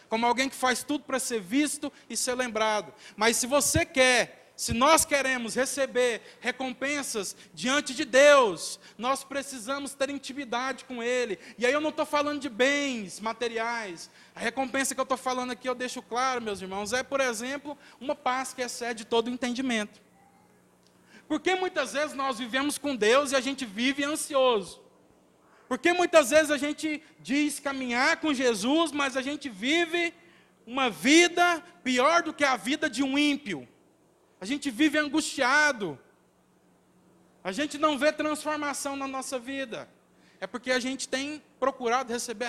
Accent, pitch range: Brazilian, 235-285 Hz